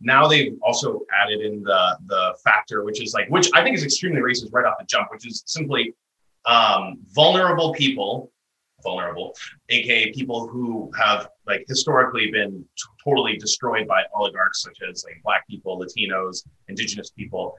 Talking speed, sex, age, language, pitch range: 165 wpm, male, 30-49, English, 105-145 Hz